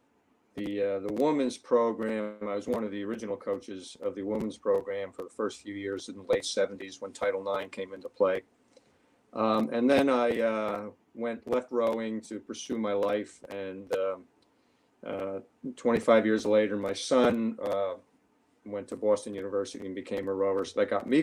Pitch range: 100-130 Hz